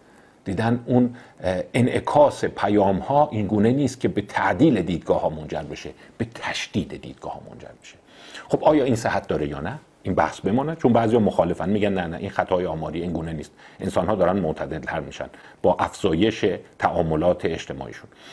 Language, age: Persian, 50-69